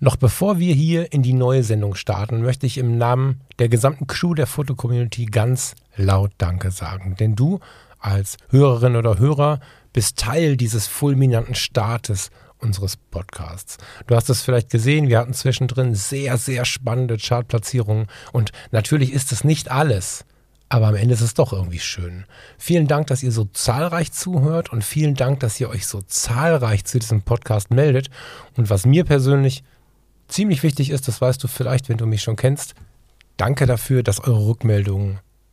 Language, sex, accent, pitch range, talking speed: German, male, German, 110-135 Hz, 170 wpm